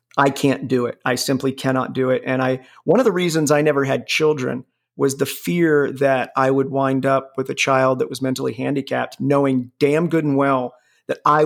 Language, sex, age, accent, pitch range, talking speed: English, male, 40-59, American, 130-145 Hz, 215 wpm